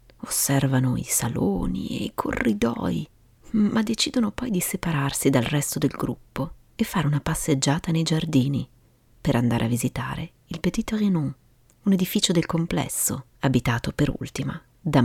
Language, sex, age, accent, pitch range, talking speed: Italian, female, 30-49, native, 120-180 Hz, 145 wpm